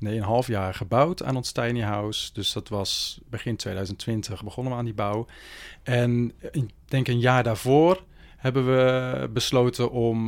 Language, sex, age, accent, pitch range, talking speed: Dutch, male, 40-59, Dutch, 100-120 Hz, 170 wpm